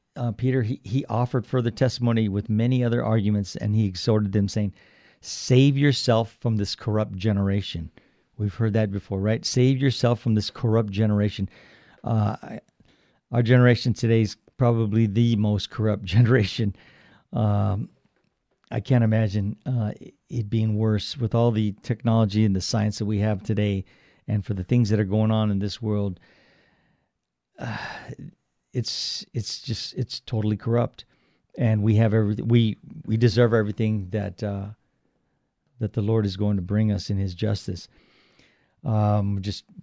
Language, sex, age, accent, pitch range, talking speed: English, male, 50-69, American, 105-115 Hz, 155 wpm